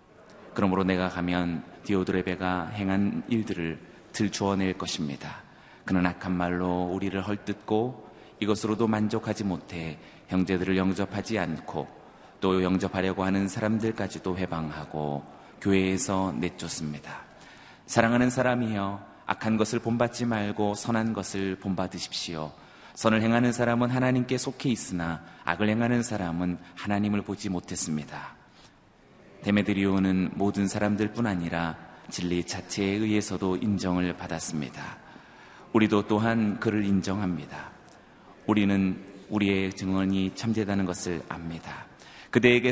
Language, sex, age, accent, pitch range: Korean, male, 30-49, native, 90-105 Hz